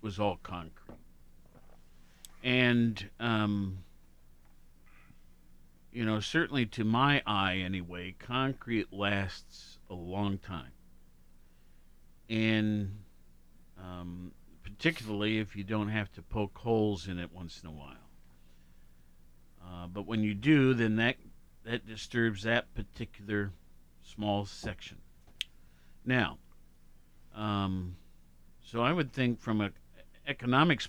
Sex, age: male, 50-69